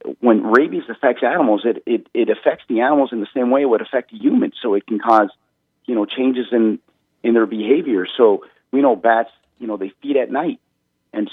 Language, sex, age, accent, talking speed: English, male, 40-59, American, 205 wpm